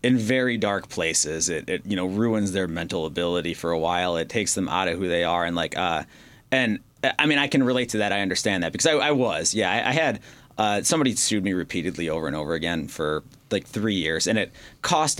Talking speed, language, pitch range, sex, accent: 240 wpm, English, 100-130 Hz, male, American